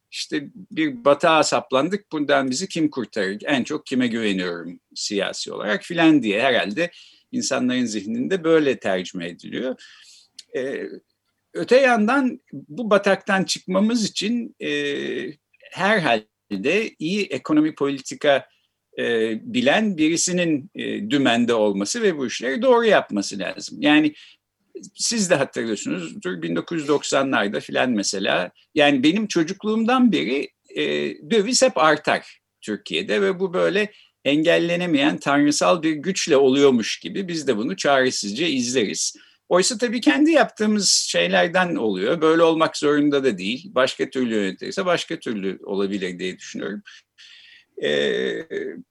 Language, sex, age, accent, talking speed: Turkish, male, 50-69, native, 120 wpm